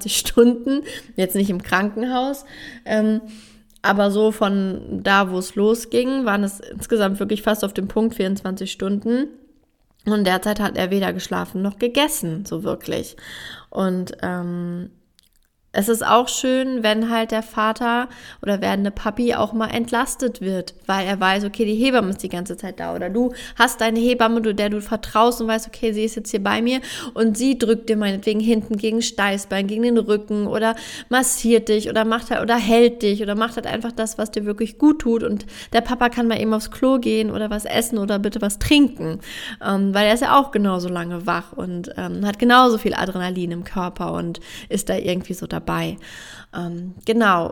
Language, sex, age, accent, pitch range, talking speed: German, female, 20-39, German, 195-235 Hz, 185 wpm